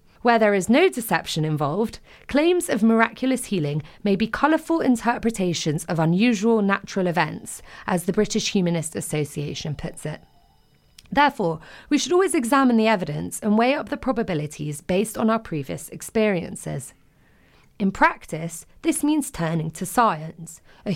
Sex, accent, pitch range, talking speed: female, British, 160-255 Hz, 145 wpm